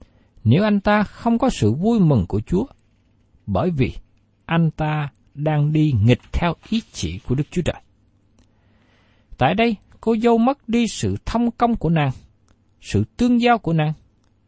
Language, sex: Vietnamese, male